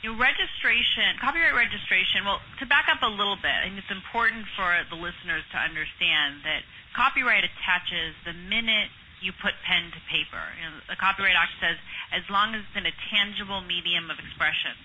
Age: 30-49